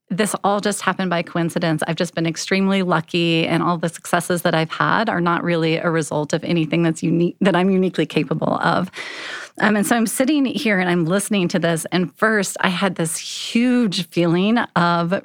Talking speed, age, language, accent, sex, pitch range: 200 wpm, 30-49, English, American, female, 170-205 Hz